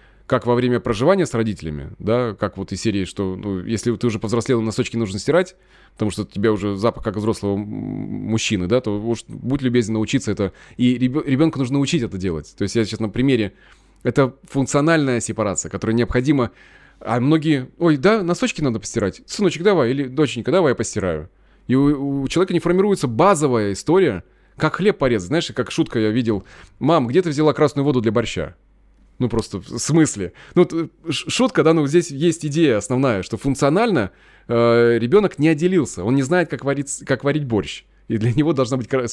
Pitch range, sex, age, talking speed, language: 110-155 Hz, male, 20-39, 185 wpm, Russian